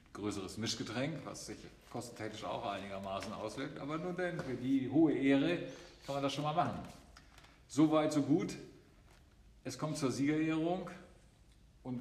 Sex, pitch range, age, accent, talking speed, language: male, 110-135 Hz, 50-69, German, 145 wpm, German